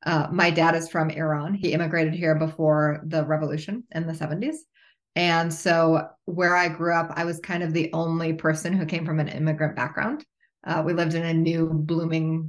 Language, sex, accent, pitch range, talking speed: English, female, American, 155-175 Hz, 195 wpm